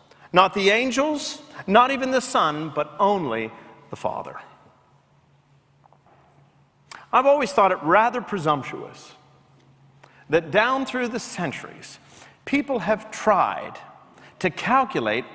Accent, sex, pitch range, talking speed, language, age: American, male, 165-265 Hz, 105 wpm, English, 50-69